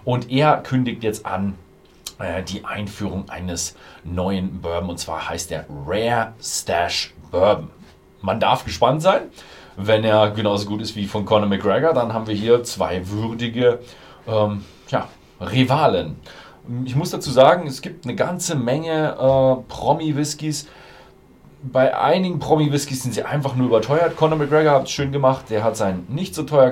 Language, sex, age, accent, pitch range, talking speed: German, male, 40-59, German, 95-130 Hz, 160 wpm